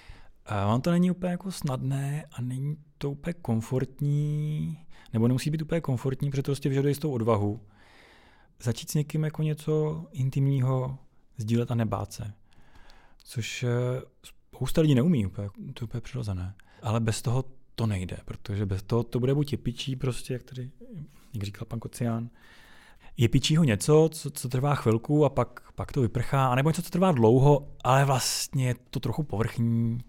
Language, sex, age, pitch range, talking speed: Czech, male, 30-49, 110-135 Hz, 165 wpm